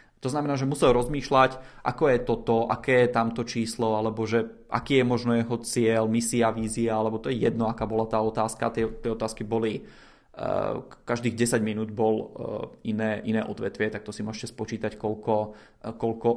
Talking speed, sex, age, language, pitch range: 170 wpm, male, 20-39, Czech, 115-135 Hz